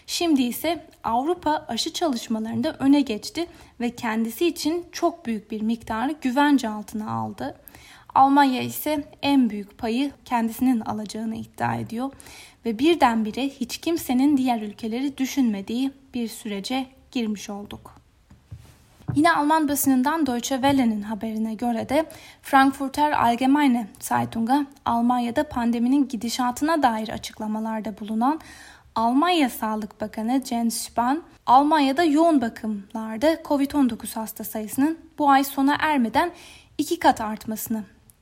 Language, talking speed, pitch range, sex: Turkish, 115 wpm, 220-285 Hz, female